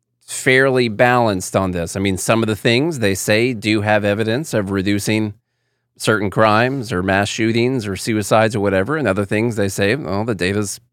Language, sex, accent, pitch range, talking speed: English, male, American, 105-130 Hz, 185 wpm